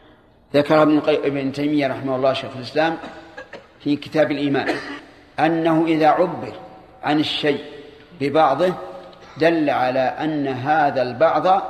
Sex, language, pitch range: male, Arabic, 140-170 Hz